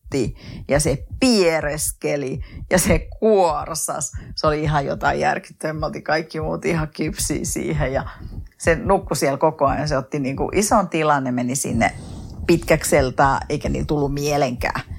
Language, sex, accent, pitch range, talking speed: Finnish, female, native, 135-170 Hz, 135 wpm